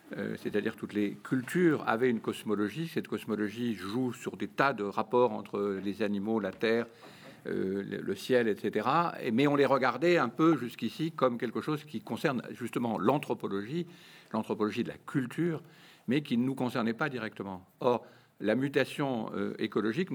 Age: 50-69